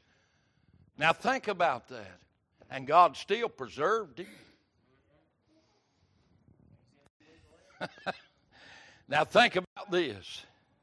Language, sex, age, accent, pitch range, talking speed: English, male, 60-79, American, 160-235 Hz, 70 wpm